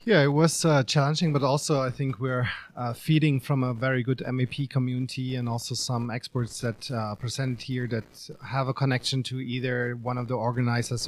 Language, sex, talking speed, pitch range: English, male, 195 wpm, 120-145 Hz